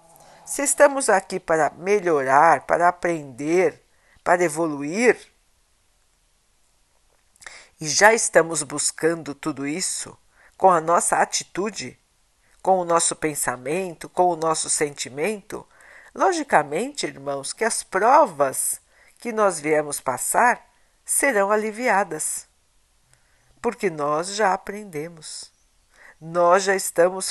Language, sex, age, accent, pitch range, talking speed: Portuguese, female, 60-79, Brazilian, 145-205 Hz, 100 wpm